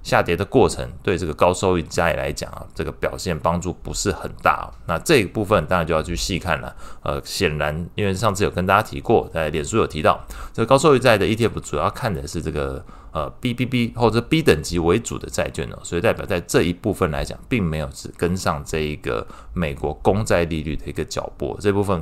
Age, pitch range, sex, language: 20-39, 80-105 Hz, male, Chinese